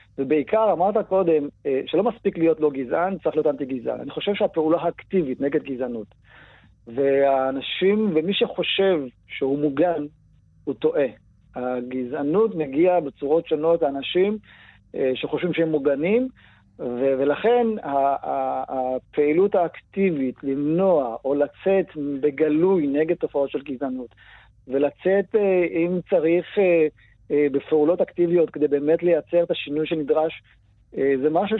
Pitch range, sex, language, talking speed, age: 140-180 Hz, male, Hebrew, 110 wpm, 50-69